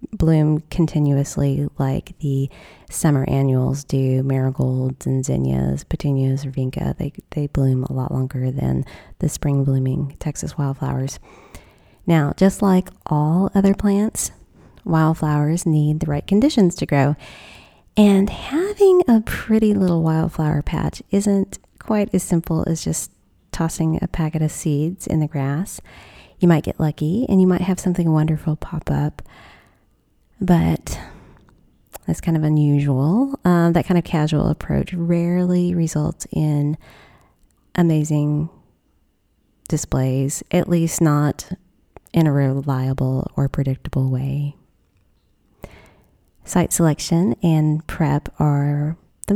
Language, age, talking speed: English, 30-49, 125 wpm